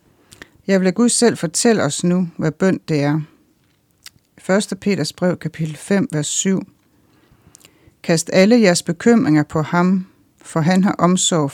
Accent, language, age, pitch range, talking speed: native, Danish, 60-79, 155-190 Hz, 145 wpm